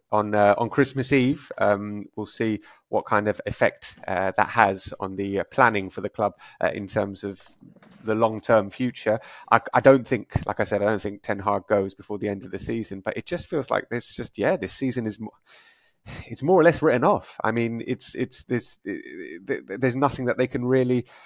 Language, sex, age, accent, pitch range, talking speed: English, male, 30-49, British, 105-140 Hz, 230 wpm